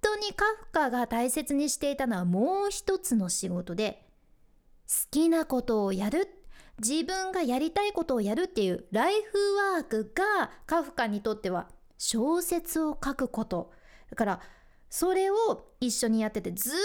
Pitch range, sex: 225-340 Hz, female